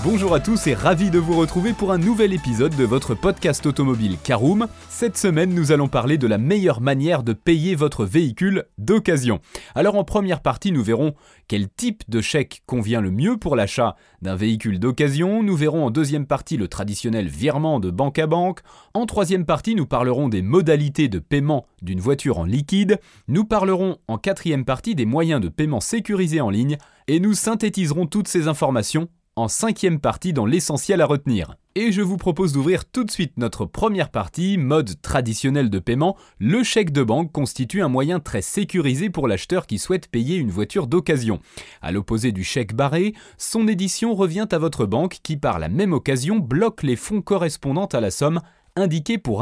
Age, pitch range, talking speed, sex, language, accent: 30-49, 125-190 Hz, 190 wpm, male, French, French